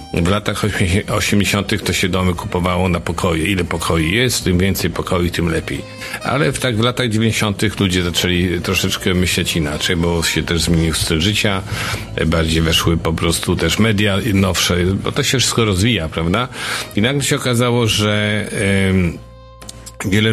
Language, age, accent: Polish, 50-69, native